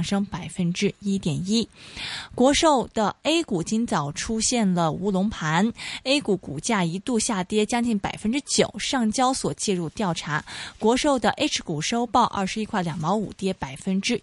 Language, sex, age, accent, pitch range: Chinese, female, 20-39, native, 185-245 Hz